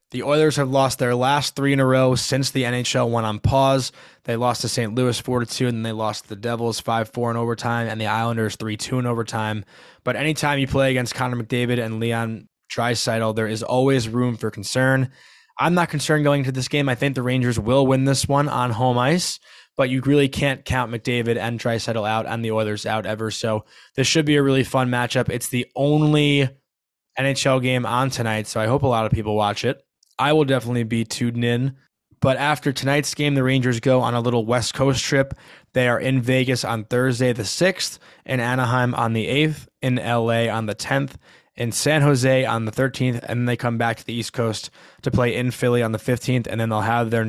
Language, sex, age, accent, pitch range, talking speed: English, male, 20-39, American, 115-135 Hz, 220 wpm